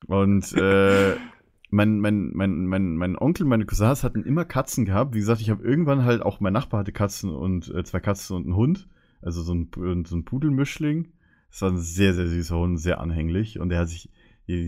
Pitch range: 90-120 Hz